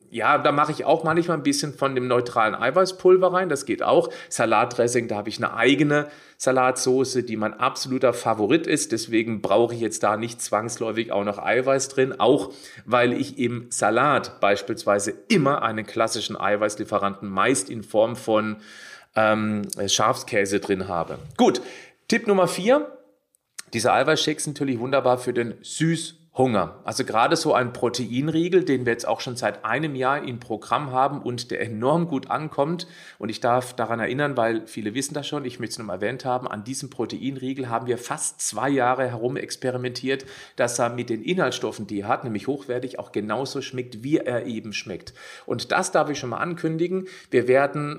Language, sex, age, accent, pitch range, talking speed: German, male, 40-59, German, 115-145 Hz, 180 wpm